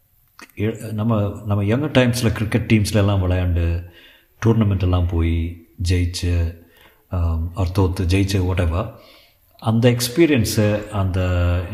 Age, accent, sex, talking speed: 50-69, native, male, 85 wpm